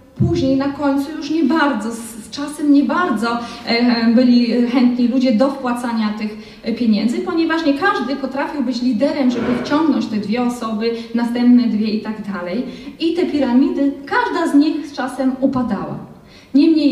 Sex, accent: female, native